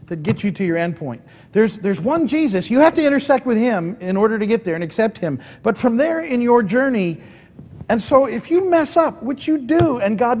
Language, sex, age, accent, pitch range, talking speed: English, male, 50-69, American, 170-255 Hz, 240 wpm